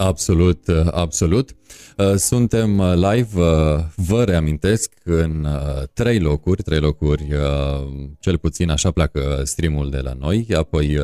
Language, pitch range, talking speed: Romanian, 75-95 Hz, 110 wpm